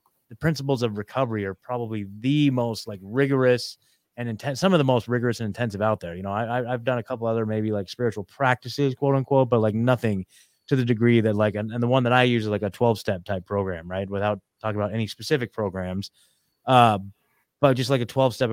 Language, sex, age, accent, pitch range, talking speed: English, male, 20-39, American, 115-140 Hz, 225 wpm